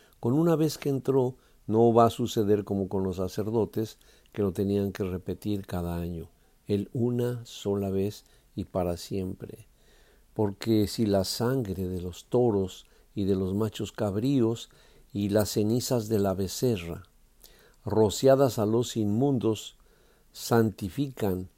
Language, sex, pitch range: Spanish, male, 100-125 Hz